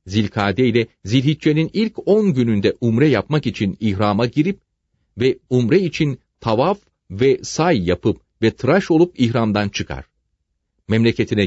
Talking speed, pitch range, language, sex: 125 wpm, 95-150 Hz, Turkish, male